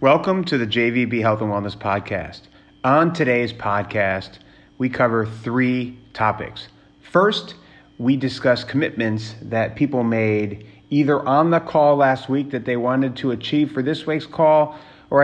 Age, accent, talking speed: 30-49, American, 150 wpm